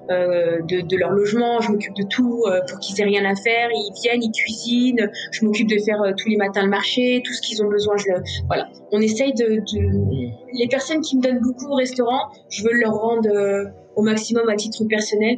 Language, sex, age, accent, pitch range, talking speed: French, female, 20-39, French, 200-240 Hz, 235 wpm